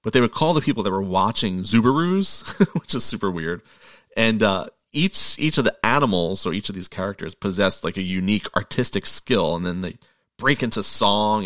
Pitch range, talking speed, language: 90-125 Hz, 200 wpm, English